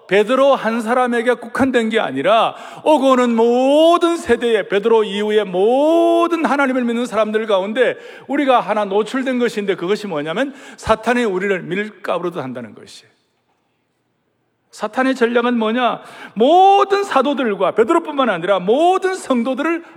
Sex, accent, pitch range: male, native, 180-250 Hz